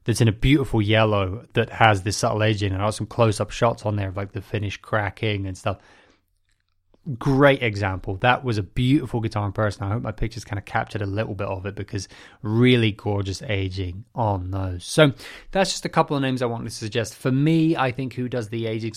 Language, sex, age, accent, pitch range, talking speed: English, male, 20-39, British, 105-125 Hz, 230 wpm